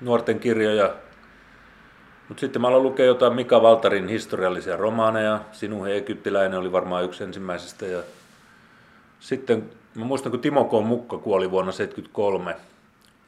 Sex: male